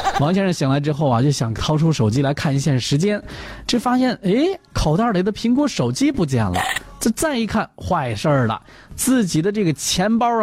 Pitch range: 120-180 Hz